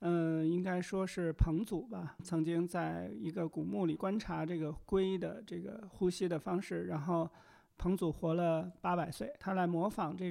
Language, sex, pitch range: Chinese, male, 160-190 Hz